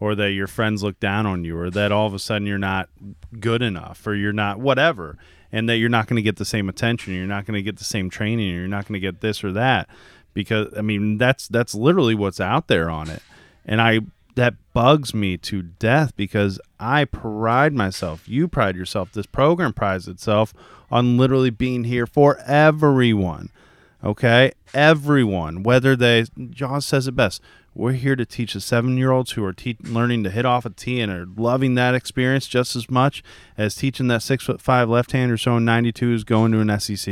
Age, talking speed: 30-49, 200 wpm